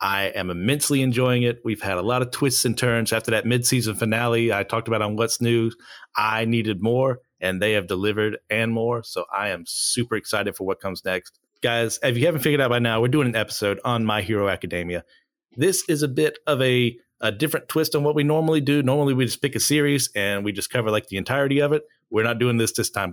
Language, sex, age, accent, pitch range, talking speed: English, male, 30-49, American, 110-130 Hz, 240 wpm